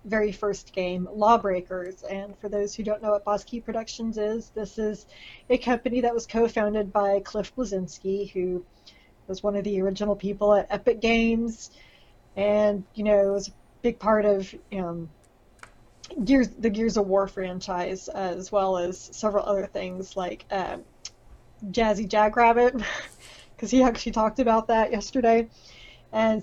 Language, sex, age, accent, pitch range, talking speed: English, female, 30-49, American, 195-230 Hz, 155 wpm